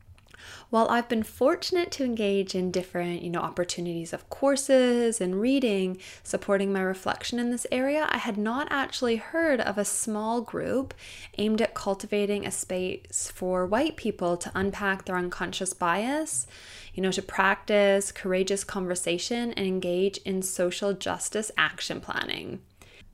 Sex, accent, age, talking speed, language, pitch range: female, American, 20-39, 145 wpm, English, 180-235 Hz